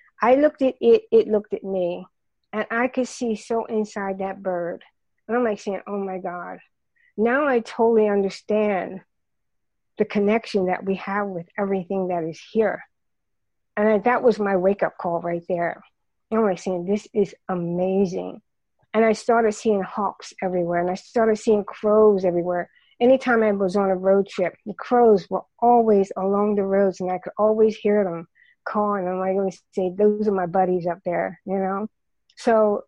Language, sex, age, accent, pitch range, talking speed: English, female, 50-69, American, 185-215 Hz, 180 wpm